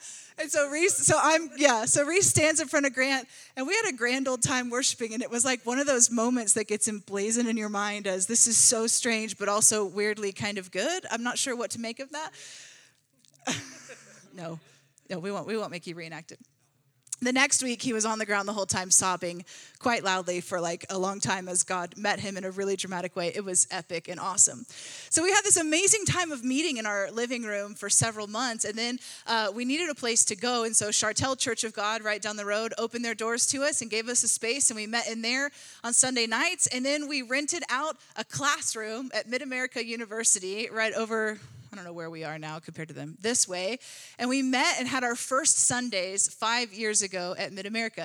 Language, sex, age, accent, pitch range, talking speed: English, female, 20-39, American, 195-255 Hz, 230 wpm